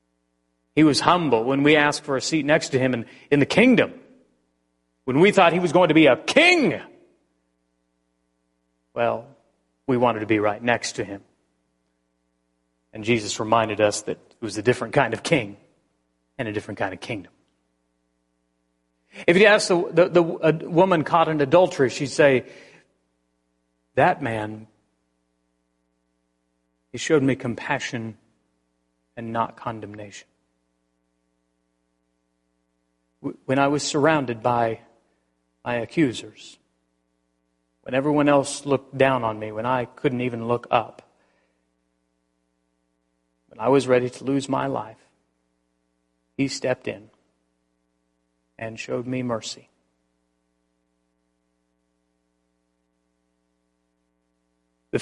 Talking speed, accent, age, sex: 120 wpm, American, 40-59, male